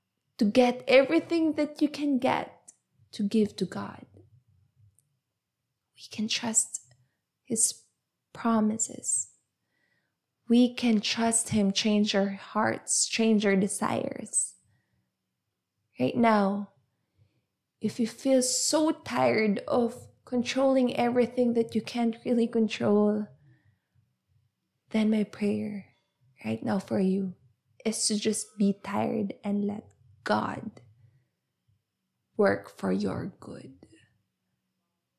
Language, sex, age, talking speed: English, female, 20-39, 105 wpm